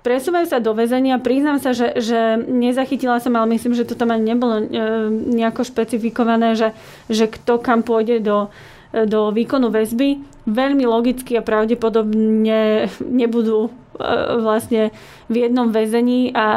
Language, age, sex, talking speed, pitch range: Slovak, 30-49, female, 140 wpm, 220-245 Hz